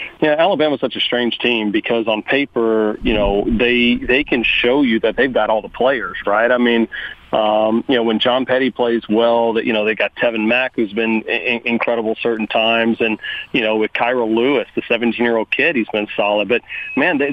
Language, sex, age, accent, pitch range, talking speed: English, male, 40-59, American, 115-125 Hz, 210 wpm